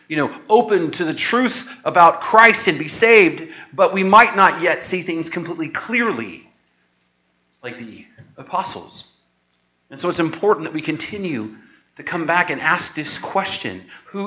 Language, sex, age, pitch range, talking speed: English, male, 30-49, 130-205 Hz, 160 wpm